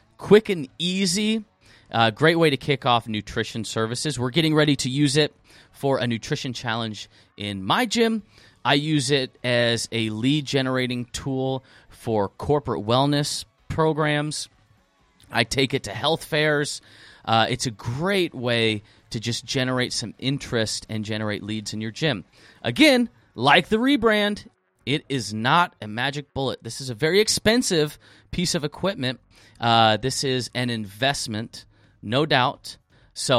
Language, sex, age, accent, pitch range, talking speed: English, male, 30-49, American, 110-145 Hz, 150 wpm